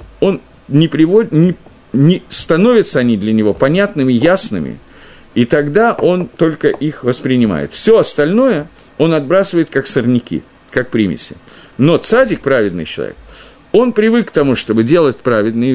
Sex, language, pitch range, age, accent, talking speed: male, Russian, 125-175 Hz, 50-69, native, 130 wpm